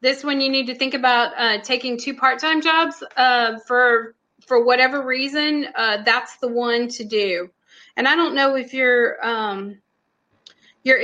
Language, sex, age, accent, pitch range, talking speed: English, female, 20-39, American, 215-255 Hz, 170 wpm